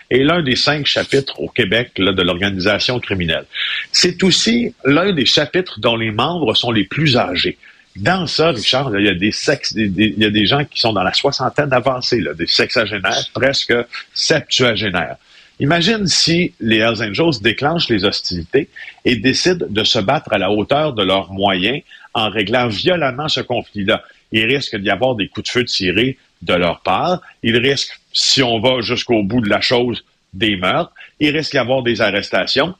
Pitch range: 105-140 Hz